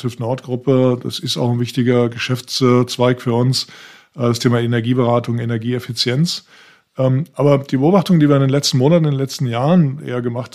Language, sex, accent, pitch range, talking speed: German, male, German, 125-145 Hz, 160 wpm